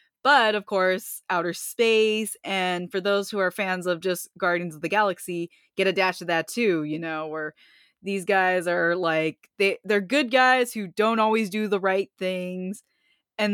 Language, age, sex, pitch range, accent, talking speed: English, 20-39, female, 180-235 Hz, American, 185 wpm